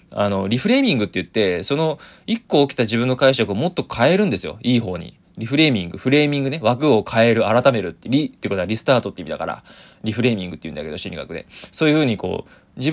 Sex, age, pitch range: male, 20-39, 105-160 Hz